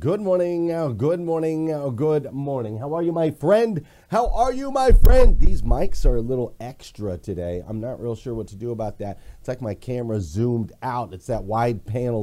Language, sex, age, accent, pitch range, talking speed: English, male, 30-49, American, 110-165 Hz, 205 wpm